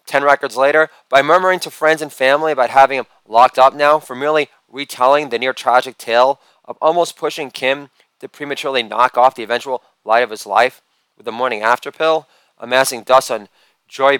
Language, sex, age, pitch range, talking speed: English, male, 30-49, 125-155 Hz, 180 wpm